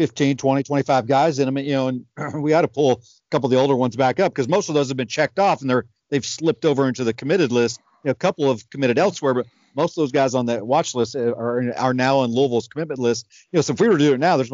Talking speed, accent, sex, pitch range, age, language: 300 wpm, American, male, 125-150 Hz, 50-69, English